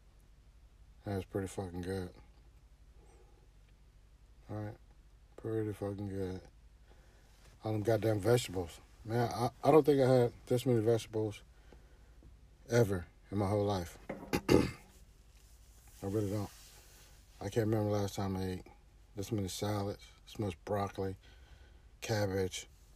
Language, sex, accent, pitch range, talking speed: English, male, American, 85-110 Hz, 120 wpm